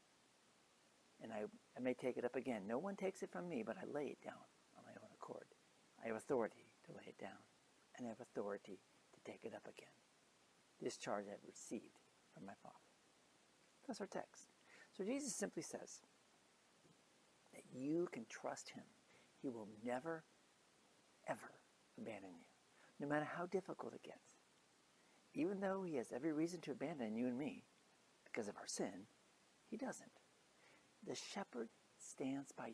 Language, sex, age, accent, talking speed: English, male, 60-79, American, 165 wpm